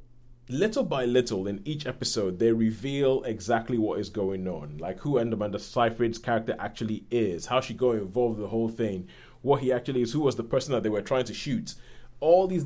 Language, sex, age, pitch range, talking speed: English, male, 30-49, 110-130 Hz, 215 wpm